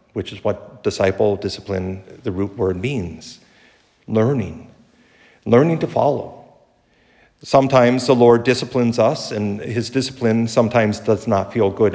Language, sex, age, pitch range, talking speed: English, male, 50-69, 105-135 Hz, 130 wpm